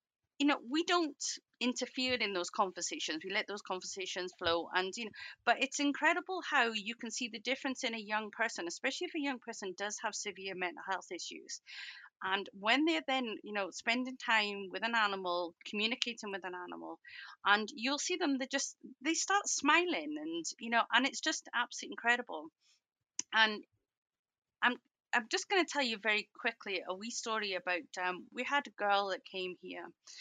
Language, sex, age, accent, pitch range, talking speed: English, female, 30-49, British, 180-275 Hz, 185 wpm